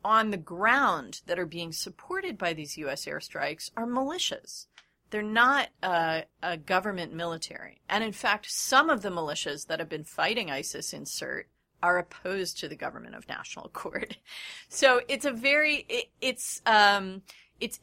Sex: female